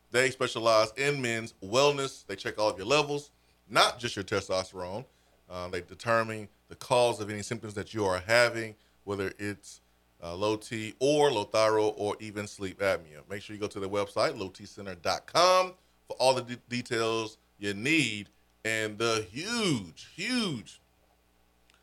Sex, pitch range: male, 90-115 Hz